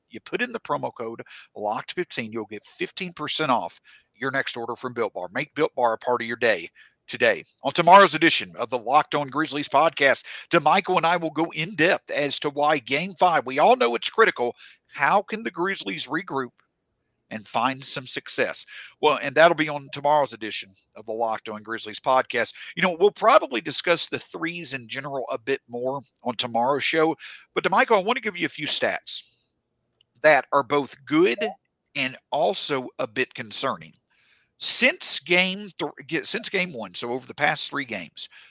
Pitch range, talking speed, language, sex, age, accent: 125-165 Hz, 185 wpm, English, male, 50-69, American